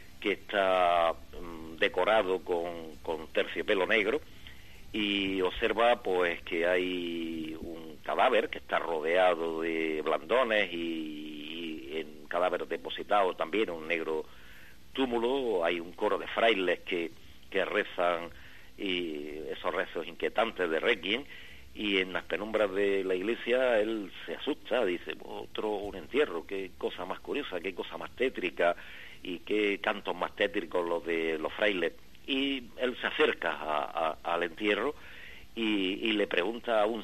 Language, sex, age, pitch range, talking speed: Spanish, male, 50-69, 80-105 Hz, 140 wpm